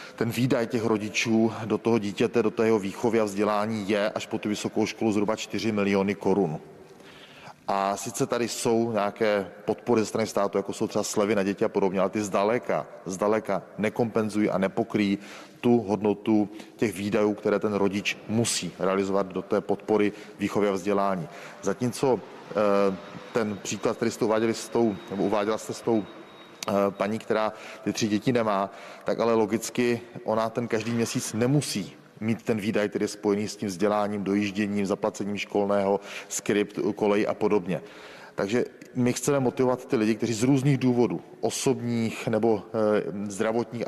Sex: male